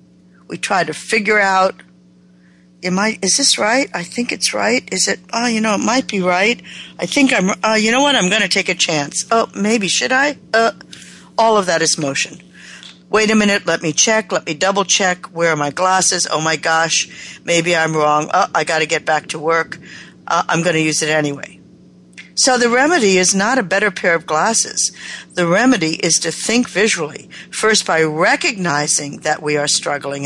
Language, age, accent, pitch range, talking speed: English, 60-79, American, 150-220 Hz, 210 wpm